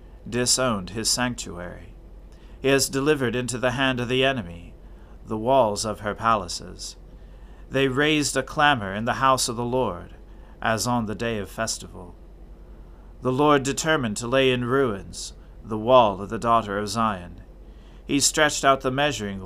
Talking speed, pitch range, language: 160 wpm, 90-125 Hz, English